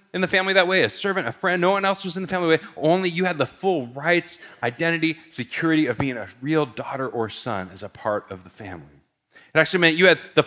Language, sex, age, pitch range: English, male, 30-49, 110-175 Hz